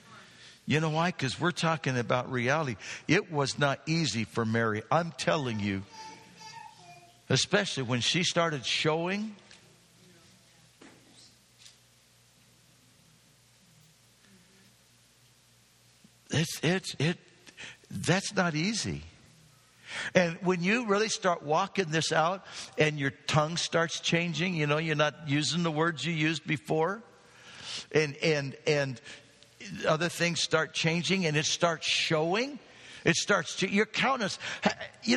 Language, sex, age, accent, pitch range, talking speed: English, male, 60-79, American, 130-175 Hz, 120 wpm